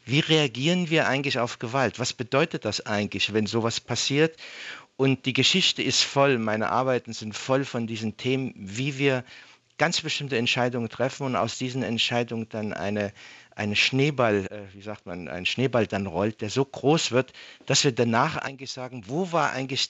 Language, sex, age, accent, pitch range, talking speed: German, male, 50-69, German, 115-150 Hz, 180 wpm